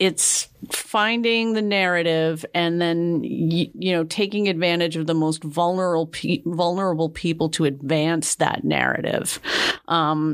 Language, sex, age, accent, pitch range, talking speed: English, female, 40-59, American, 160-190 Hz, 120 wpm